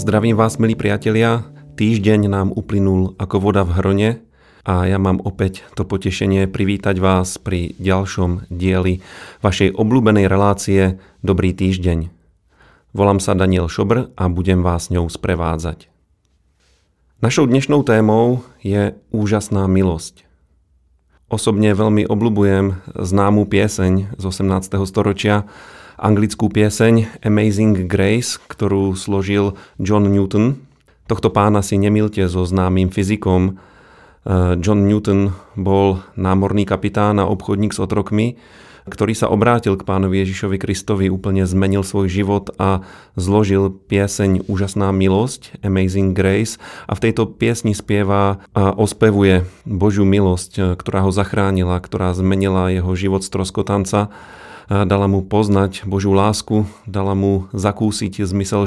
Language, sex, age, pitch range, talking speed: Slovak, male, 30-49, 95-105 Hz, 120 wpm